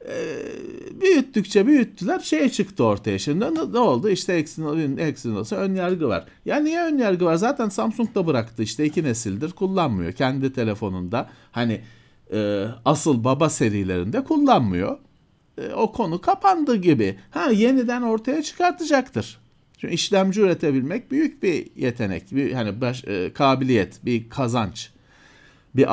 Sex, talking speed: male, 140 wpm